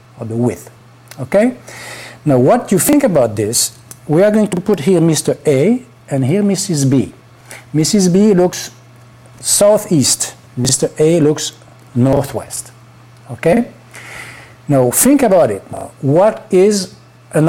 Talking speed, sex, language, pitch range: 125 wpm, male, English, 120-160 Hz